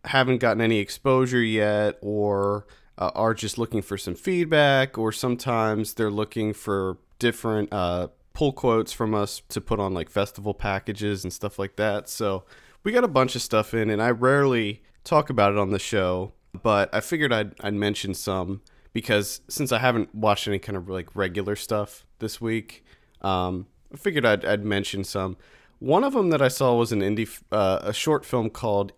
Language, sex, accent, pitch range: English, male, American, 100-120 Hz